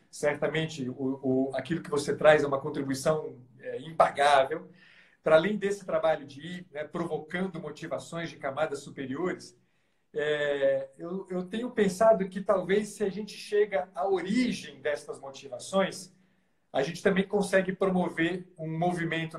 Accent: Brazilian